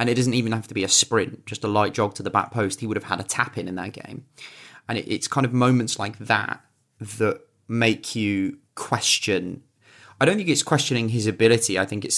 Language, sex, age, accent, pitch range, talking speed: English, male, 30-49, British, 105-130 Hz, 230 wpm